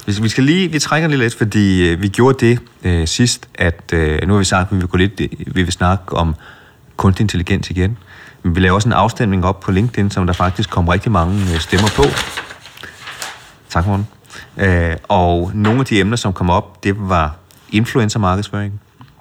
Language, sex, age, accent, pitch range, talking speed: Danish, male, 30-49, native, 85-110 Hz, 190 wpm